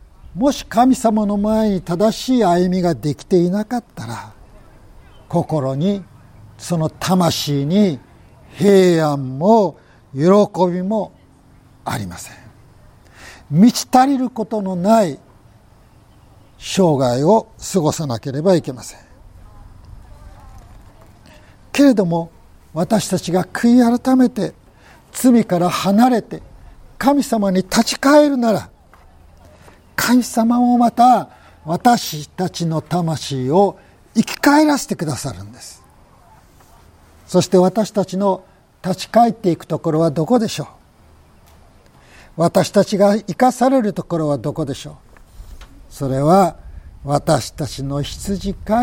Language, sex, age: Japanese, male, 60-79